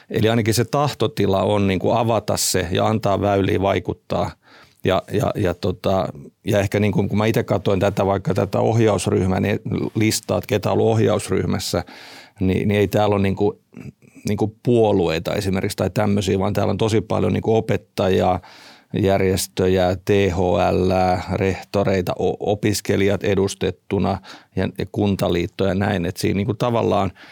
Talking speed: 150 wpm